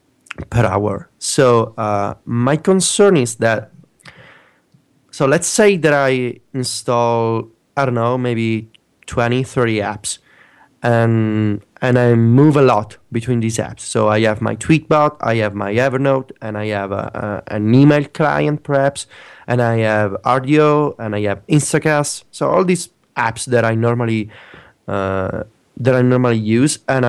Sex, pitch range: male, 110-135 Hz